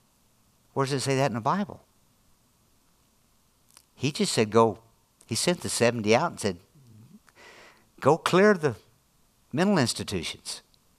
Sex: male